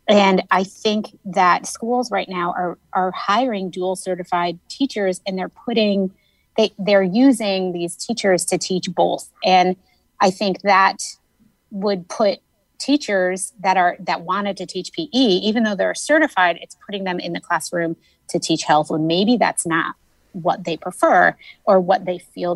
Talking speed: 170 wpm